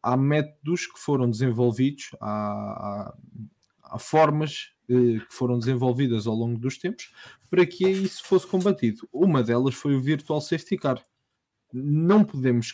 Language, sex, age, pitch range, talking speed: English, male, 20-39, 120-145 Hz, 140 wpm